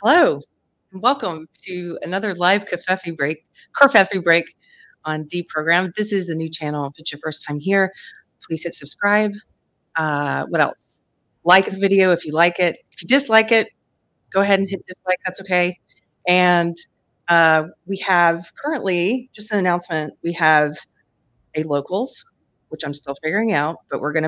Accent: American